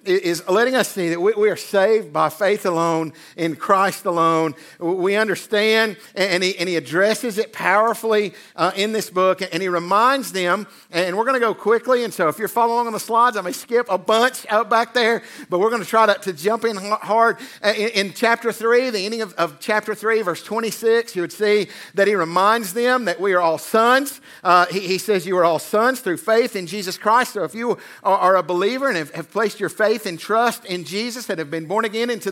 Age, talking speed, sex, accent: 50-69, 225 wpm, male, American